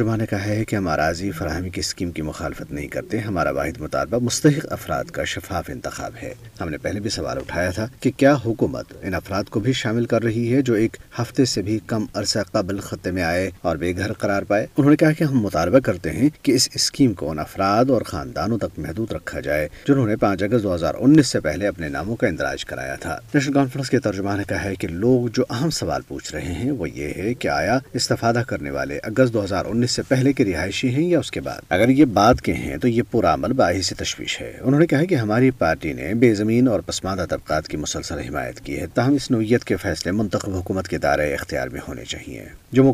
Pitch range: 90-125 Hz